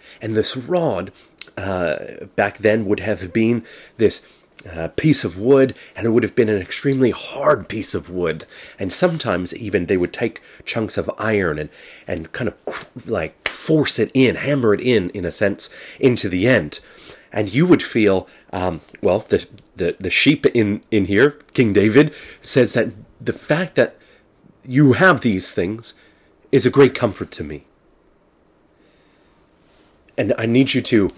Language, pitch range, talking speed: English, 95-120 Hz, 165 wpm